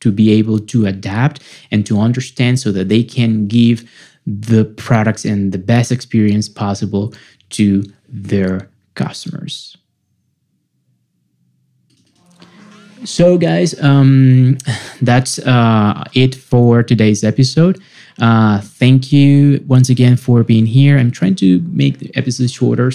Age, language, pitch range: 20-39, English, 105-130 Hz